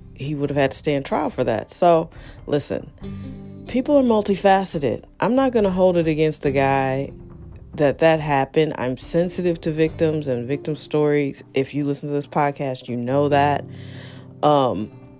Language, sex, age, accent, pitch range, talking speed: English, female, 40-59, American, 130-170 Hz, 170 wpm